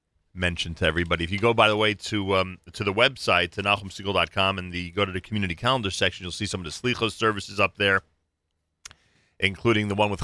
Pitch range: 90-110 Hz